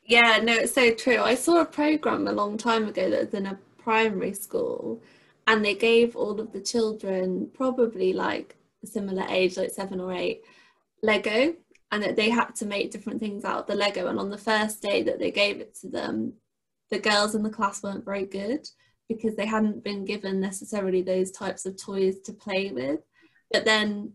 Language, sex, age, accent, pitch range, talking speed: English, female, 20-39, British, 185-220 Hz, 205 wpm